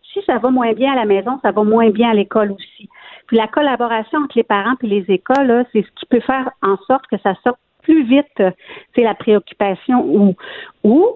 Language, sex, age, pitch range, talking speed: French, female, 50-69, 195-255 Hz, 225 wpm